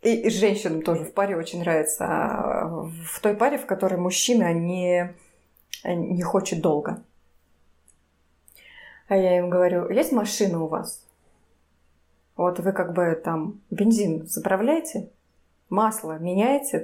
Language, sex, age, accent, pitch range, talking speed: Russian, female, 20-39, native, 180-235 Hz, 120 wpm